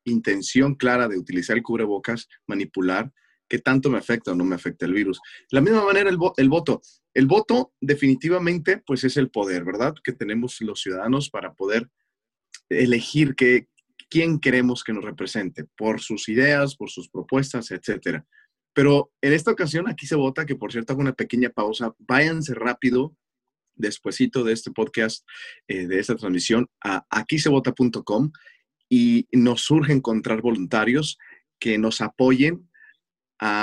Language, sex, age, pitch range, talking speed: English, male, 30-49, 115-145 Hz, 155 wpm